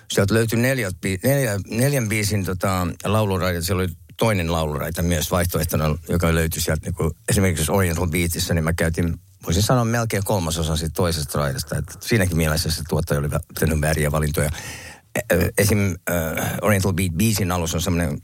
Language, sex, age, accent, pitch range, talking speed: Finnish, male, 60-79, native, 80-100 Hz, 150 wpm